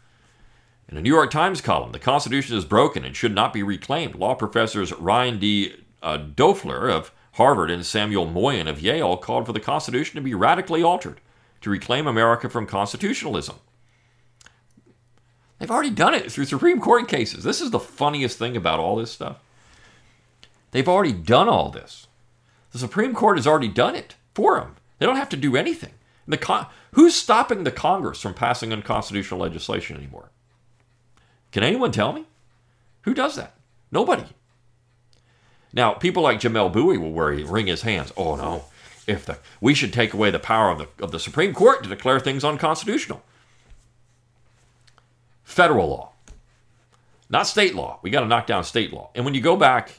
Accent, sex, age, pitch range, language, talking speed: American, male, 50-69, 105-125 Hz, English, 175 wpm